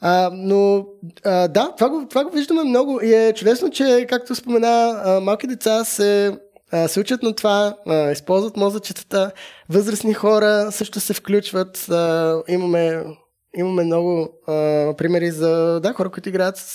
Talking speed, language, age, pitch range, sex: 160 wpm, Bulgarian, 20-39, 155-210 Hz, male